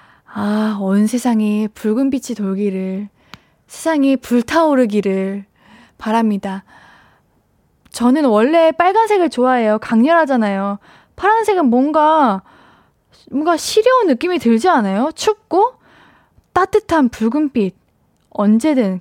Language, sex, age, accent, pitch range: Korean, female, 10-29, native, 225-325 Hz